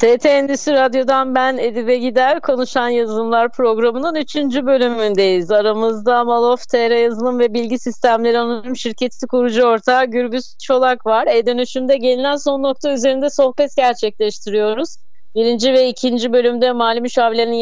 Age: 30-49